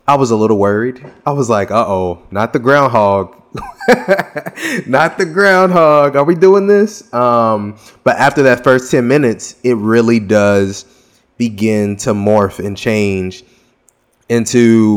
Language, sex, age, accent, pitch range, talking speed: English, male, 20-39, American, 100-120 Hz, 140 wpm